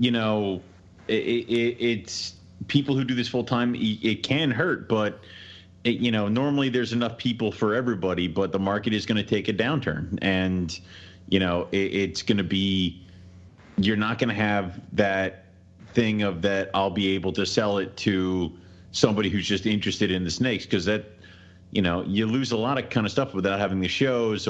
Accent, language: American, English